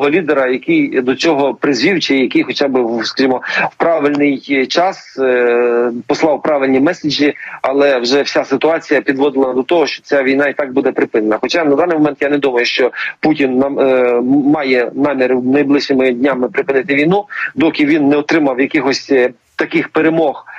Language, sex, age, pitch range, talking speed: Ukrainian, male, 40-59, 135-160 Hz, 150 wpm